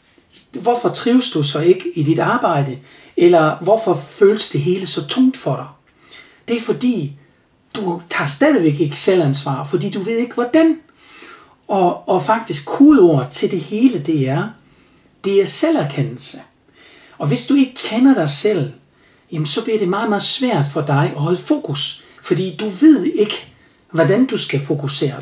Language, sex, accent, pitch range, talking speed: Danish, male, native, 155-215 Hz, 165 wpm